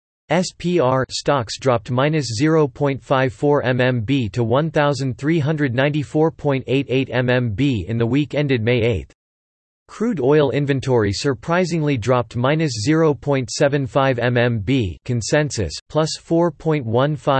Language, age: English, 40-59